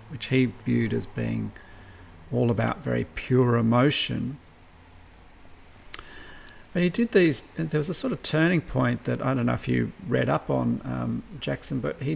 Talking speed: 175 wpm